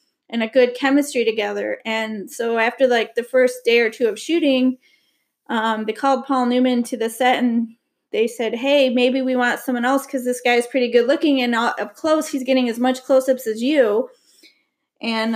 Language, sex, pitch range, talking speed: English, female, 220-260 Hz, 200 wpm